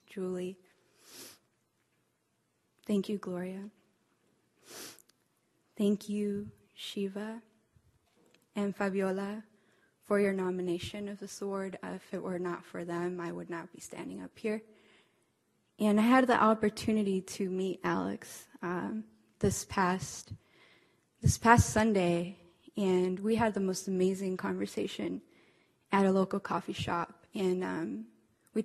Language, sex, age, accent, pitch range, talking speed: English, female, 10-29, American, 180-210 Hz, 120 wpm